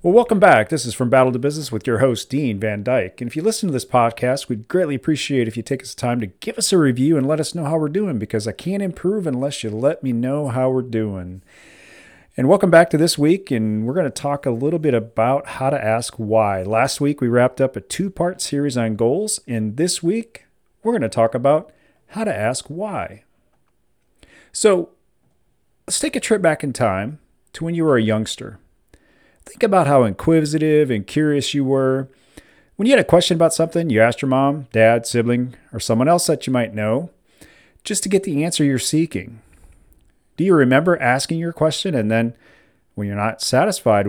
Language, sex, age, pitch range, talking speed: English, male, 40-59, 115-160 Hz, 215 wpm